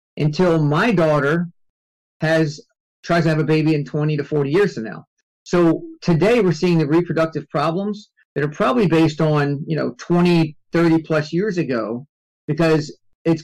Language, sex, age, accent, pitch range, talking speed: English, male, 50-69, American, 135-165 Hz, 160 wpm